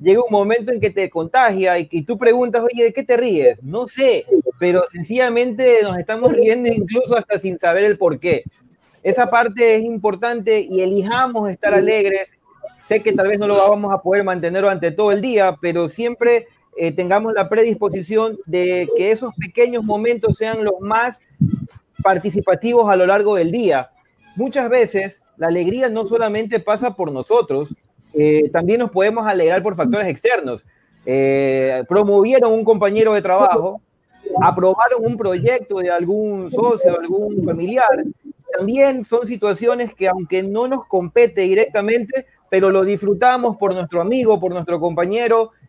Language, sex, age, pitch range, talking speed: Spanish, male, 30-49, 185-235 Hz, 160 wpm